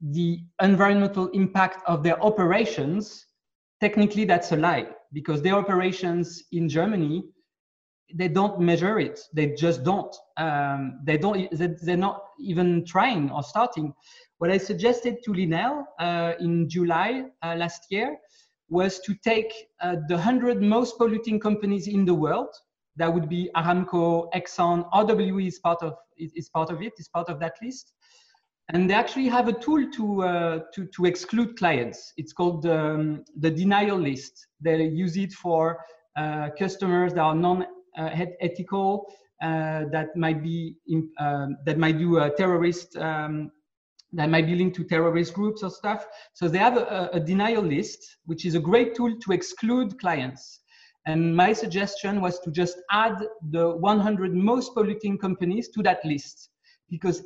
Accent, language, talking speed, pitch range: French, English, 160 wpm, 165-210 Hz